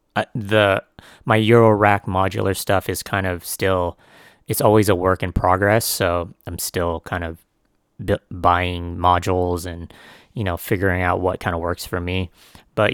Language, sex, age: English, male, 30-49